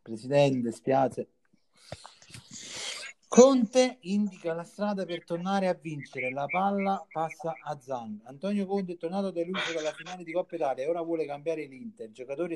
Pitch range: 130-175 Hz